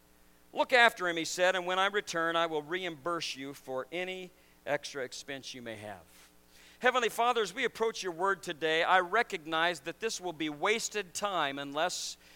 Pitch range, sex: 120-195 Hz, male